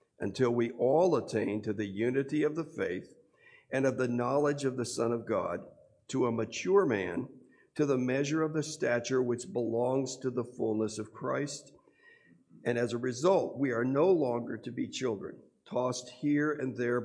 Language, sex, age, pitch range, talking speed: English, male, 50-69, 115-140 Hz, 180 wpm